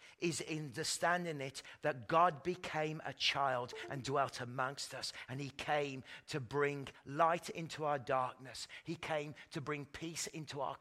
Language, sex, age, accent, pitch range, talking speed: English, male, 40-59, British, 125-165 Hz, 155 wpm